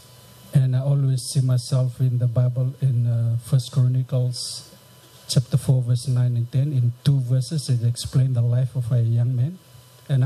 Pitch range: 125-145 Hz